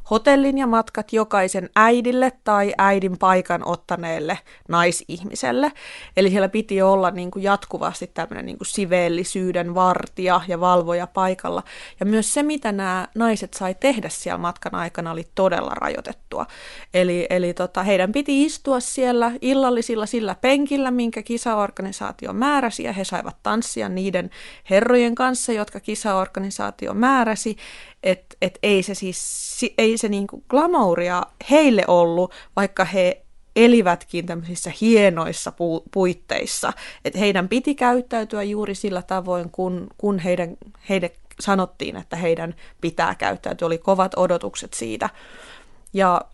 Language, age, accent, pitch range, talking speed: Finnish, 20-39, native, 180-225 Hz, 135 wpm